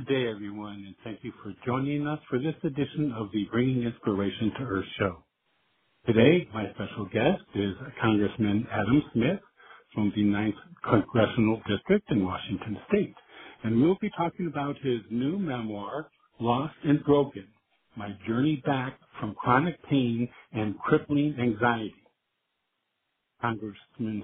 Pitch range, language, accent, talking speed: 110-145 Hz, English, American, 140 wpm